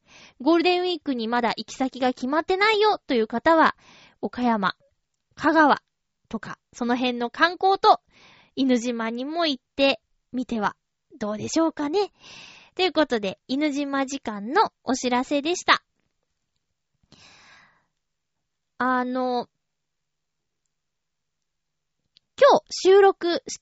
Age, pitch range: 20-39, 230-345 Hz